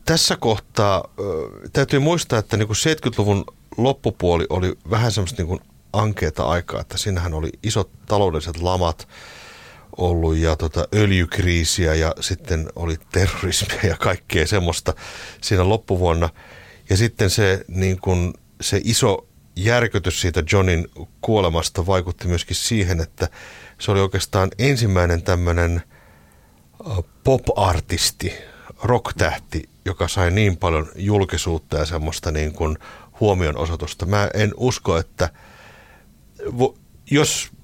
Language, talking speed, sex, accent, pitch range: Finnish, 105 wpm, male, native, 85-110 Hz